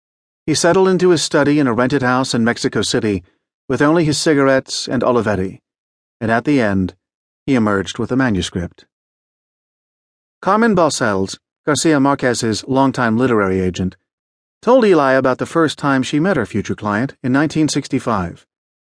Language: English